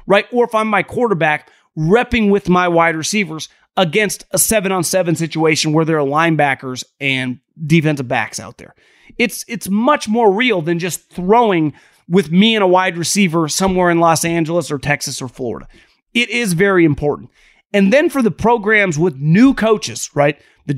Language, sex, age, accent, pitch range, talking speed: English, male, 30-49, American, 160-225 Hz, 175 wpm